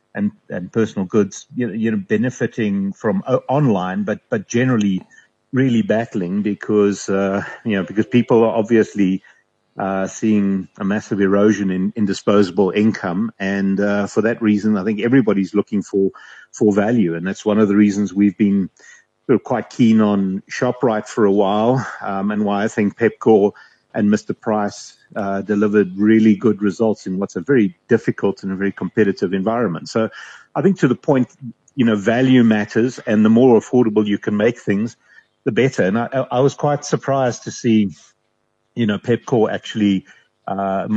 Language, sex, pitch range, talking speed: English, male, 100-115 Hz, 170 wpm